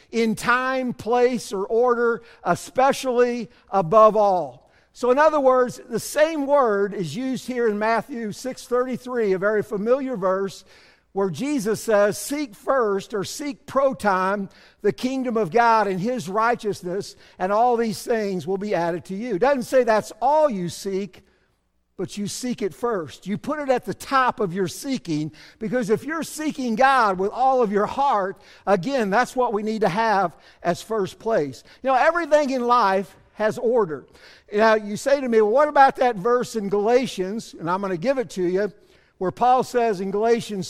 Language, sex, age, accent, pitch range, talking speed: English, male, 50-69, American, 195-250 Hz, 175 wpm